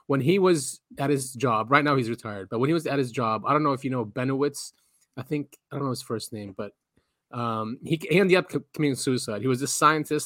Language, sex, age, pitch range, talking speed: English, male, 30-49, 120-150 Hz, 255 wpm